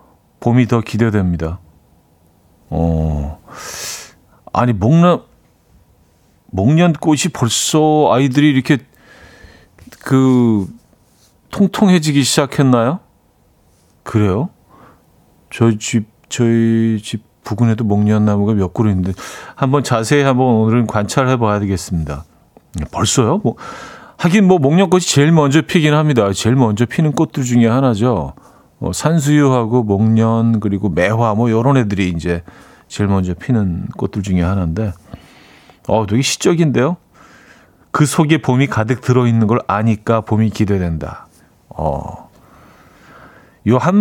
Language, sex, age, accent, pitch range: Korean, male, 40-59, native, 100-140 Hz